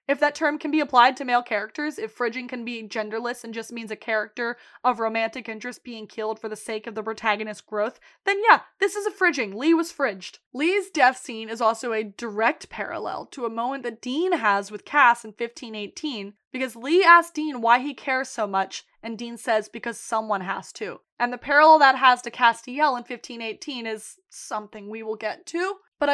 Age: 20-39